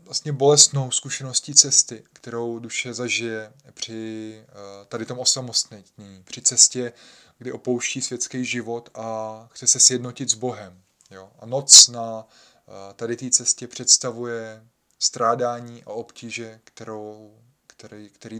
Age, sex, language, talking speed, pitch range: 20-39, male, Czech, 115 wpm, 115-130 Hz